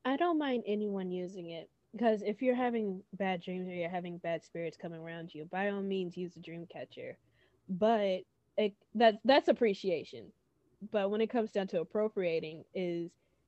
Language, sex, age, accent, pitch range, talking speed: English, female, 20-39, American, 175-210 Hz, 170 wpm